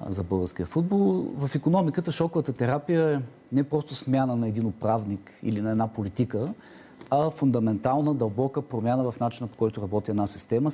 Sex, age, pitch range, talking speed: male, 40-59, 105-145 Hz, 170 wpm